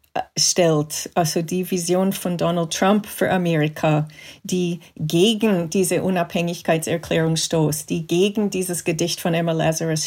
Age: 40-59